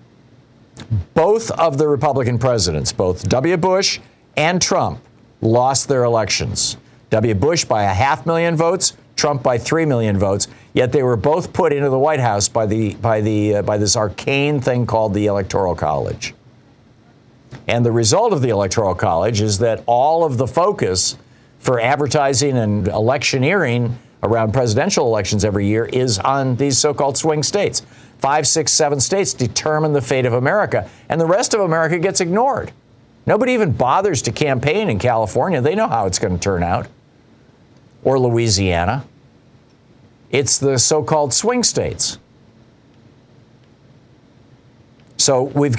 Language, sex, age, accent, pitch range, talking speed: English, male, 50-69, American, 115-140 Hz, 150 wpm